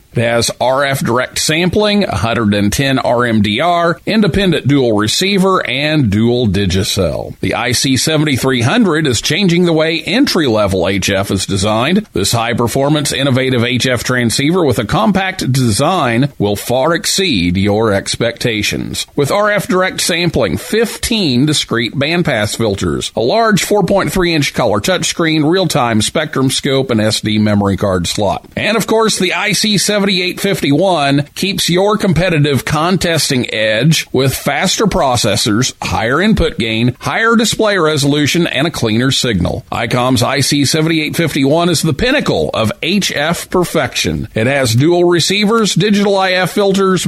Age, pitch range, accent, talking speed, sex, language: 50-69, 120-185 Hz, American, 120 wpm, male, English